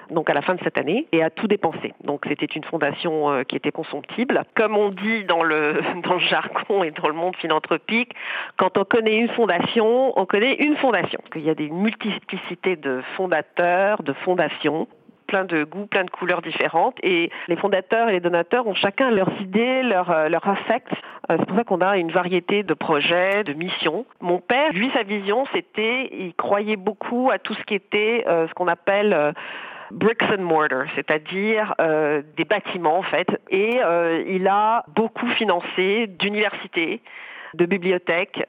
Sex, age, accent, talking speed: female, 40-59, French, 180 wpm